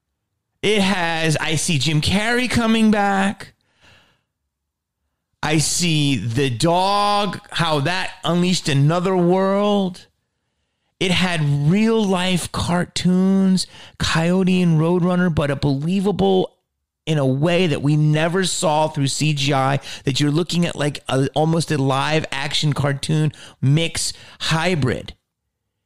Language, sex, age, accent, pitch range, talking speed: English, male, 30-49, American, 105-165 Hz, 115 wpm